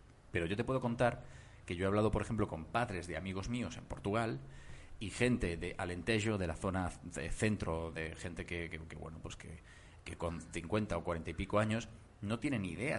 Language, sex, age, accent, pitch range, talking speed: Spanish, male, 30-49, Spanish, 85-110 Hz, 215 wpm